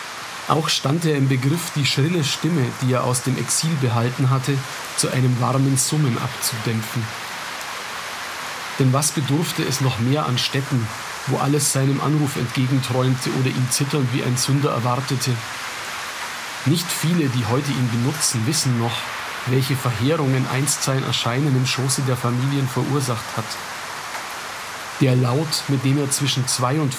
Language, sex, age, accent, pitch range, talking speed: German, male, 40-59, German, 125-145 Hz, 150 wpm